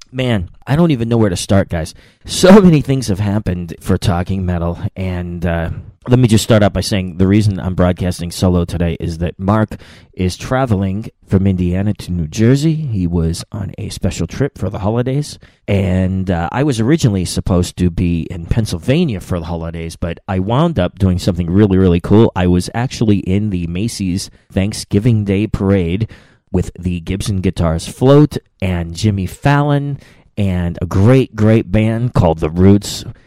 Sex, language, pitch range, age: male, English, 90-110 Hz, 30-49